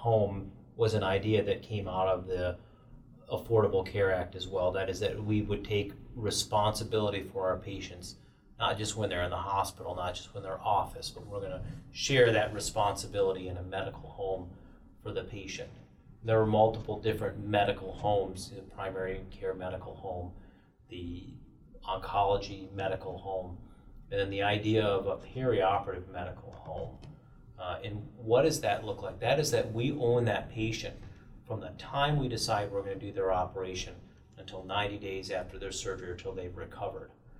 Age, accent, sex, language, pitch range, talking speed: 30-49, American, male, English, 95-115 Hz, 175 wpm